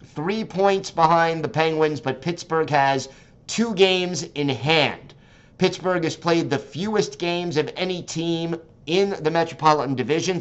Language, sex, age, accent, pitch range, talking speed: English, male, 50-69, American, 135-165 Hz, 145 wpm